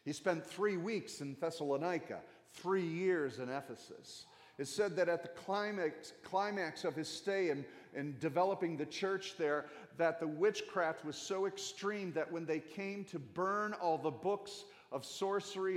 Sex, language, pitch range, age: male, English, 145-185 Hz, 40-59